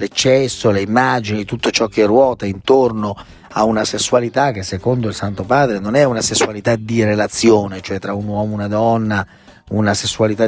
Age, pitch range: 40-59, 105-175 Hz